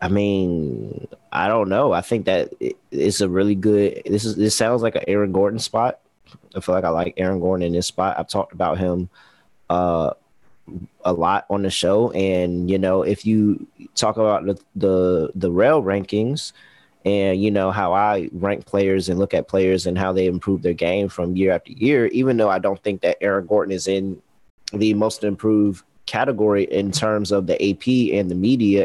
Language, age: English, 30-49